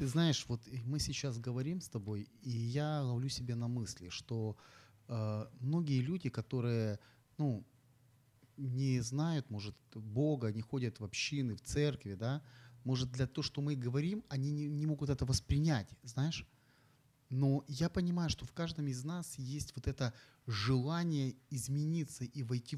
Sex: male